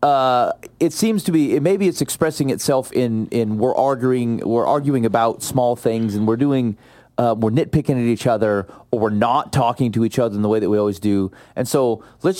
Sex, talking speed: male, 215 wpm